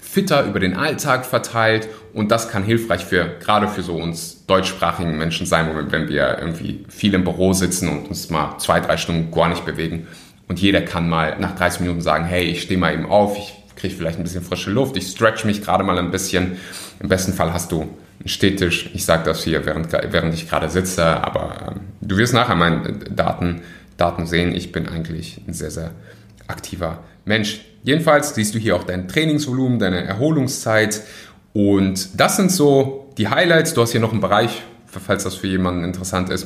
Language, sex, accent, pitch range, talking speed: German, male, German, 90-110 Hz, 195 wpm